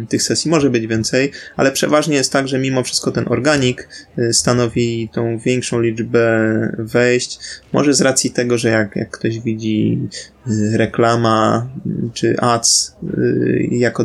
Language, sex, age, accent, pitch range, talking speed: Polish, male, 20-39, native, 115-130 Hz, 135 wpm